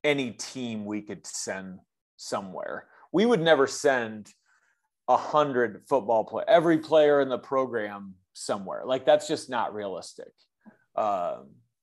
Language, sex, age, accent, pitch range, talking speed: English, male, 30-49, American, 100-135 Hz, 130 wpm